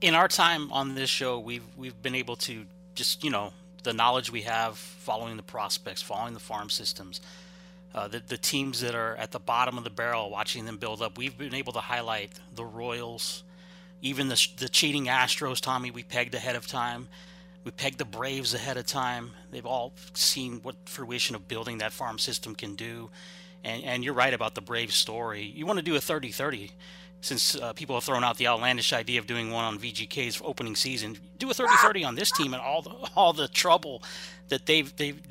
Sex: male